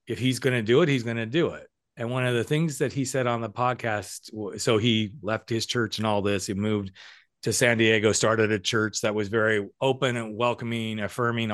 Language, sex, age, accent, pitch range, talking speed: English, male, 40-59, American, 110-150 Hz, 235 wpm